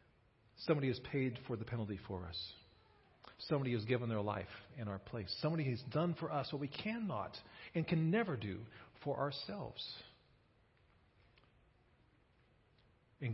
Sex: male